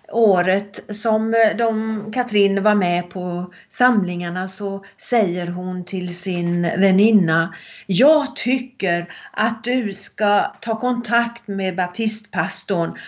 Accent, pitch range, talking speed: native, 185-230 Hz, 105 wpm